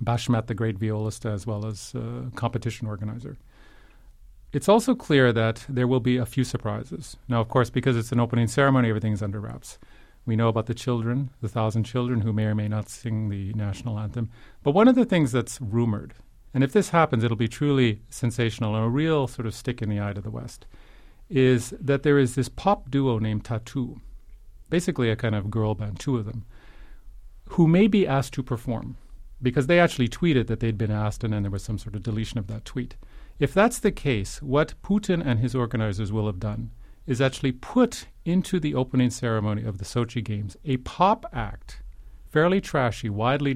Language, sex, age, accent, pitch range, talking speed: English, male, 40-59, American, 110-135 Hz, 205 wpm